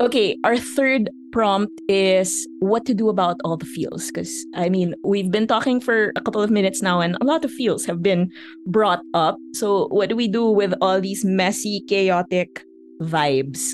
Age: 20-39